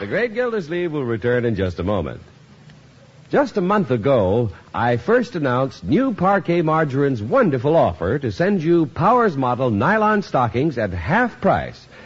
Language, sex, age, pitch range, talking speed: English, male, 60-79, 120-185 Hz, 155 wpm